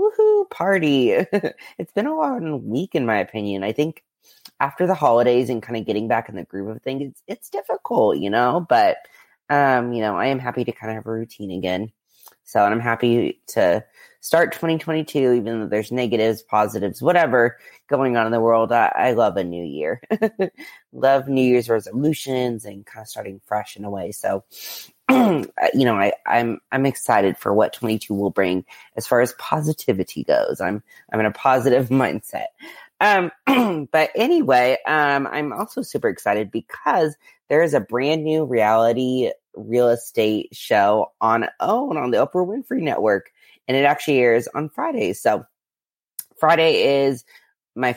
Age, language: 20-39, English